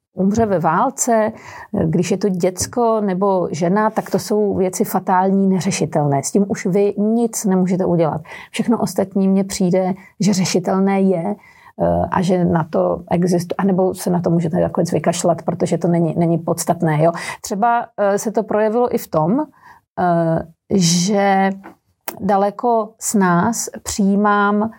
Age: 40-59